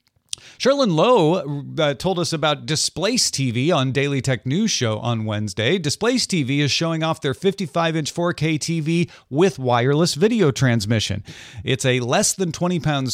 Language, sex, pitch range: English, male, 120-170 Hz